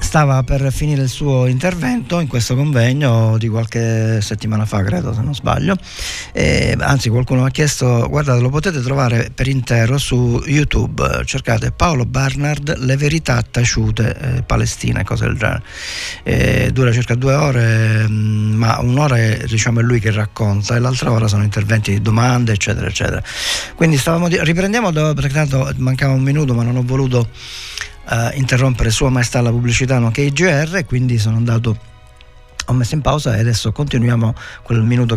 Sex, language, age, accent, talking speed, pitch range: male, Italian, 40-59, native, 170 wpm, 115-145 Hz